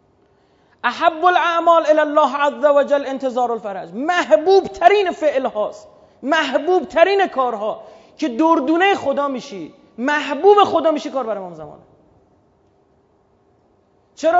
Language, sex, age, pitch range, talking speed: Persian, male, 30-49, 250-325 Hz, 115 wpm